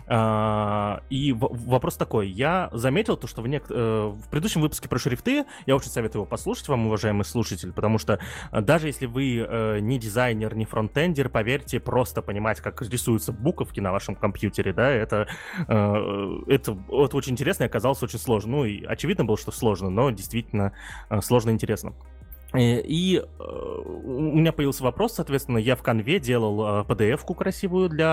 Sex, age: male, 20-39